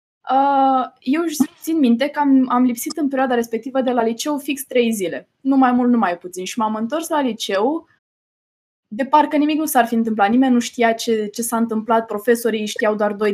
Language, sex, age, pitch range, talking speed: Romanian, female, 20-39, 225-280 Hz, 205 wpm